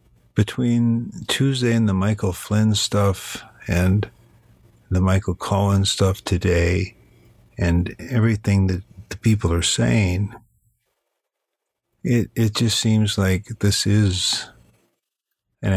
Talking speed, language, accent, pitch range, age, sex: 105 wpm, English, American, 90-105 Hz, 50-69, male